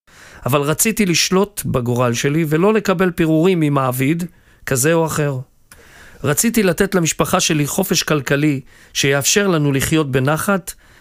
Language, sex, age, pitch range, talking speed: Hebrew, male, 40-59, 125-170 Hz, 120 wpm